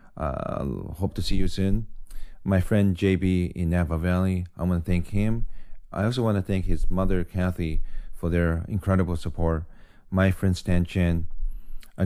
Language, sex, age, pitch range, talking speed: English, male, 30-49, 85-95 Hz, 170 wpm